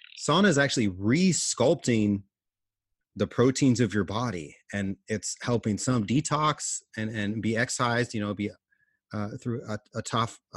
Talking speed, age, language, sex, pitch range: 150 wpm, 30-49, English, male, 100-120 Hz